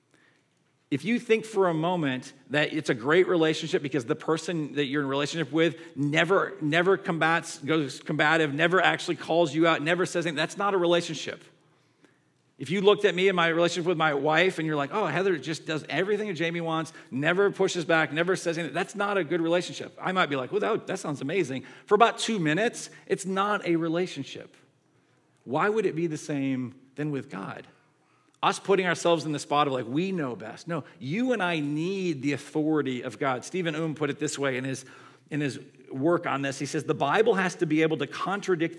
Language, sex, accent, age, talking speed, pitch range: English, male, American, 40-59, 215 wpm, 140-175 Hz